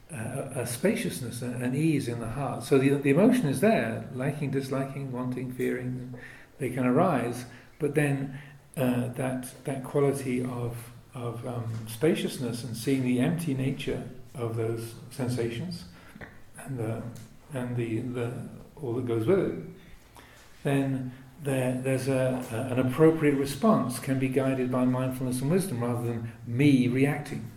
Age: 50-69